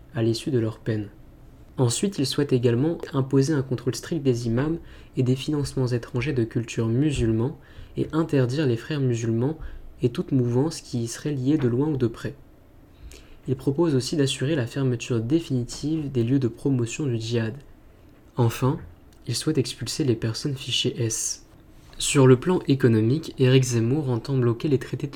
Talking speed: 165 wpm